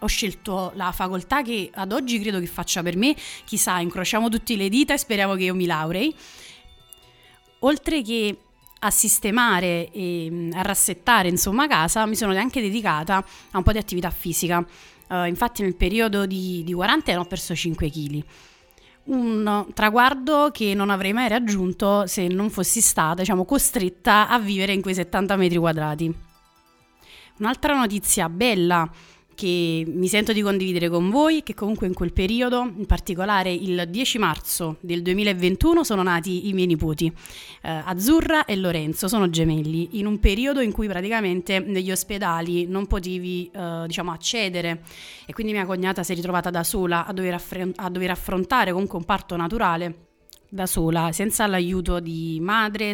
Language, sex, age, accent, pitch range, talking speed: Italian, female, 30-49, native, 175-215 Hz, 160 wpm